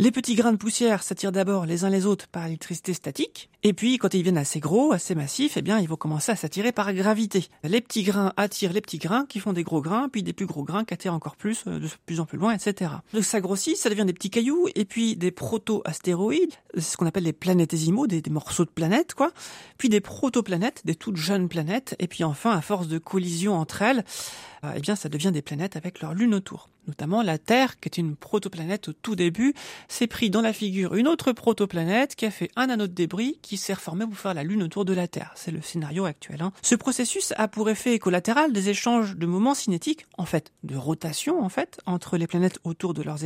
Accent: French